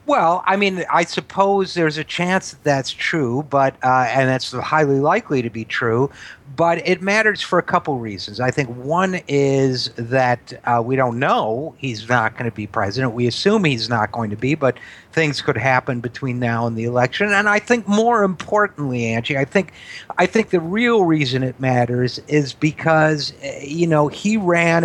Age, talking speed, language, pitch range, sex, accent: 50-69, 190 wpm, English, 125-165 Hz, male, American